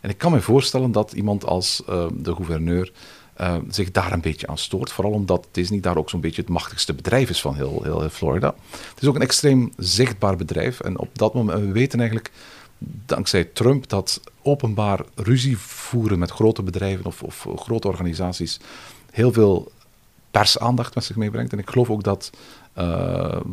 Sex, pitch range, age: male, 85-110 Hz, 50-69